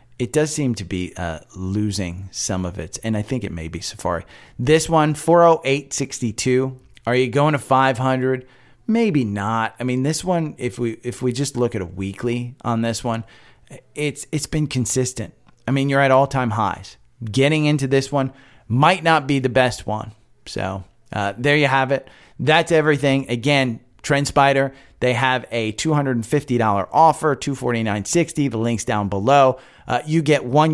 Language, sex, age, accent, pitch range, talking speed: English, male, 30-49, American, 115-145 Hz, 190 wpm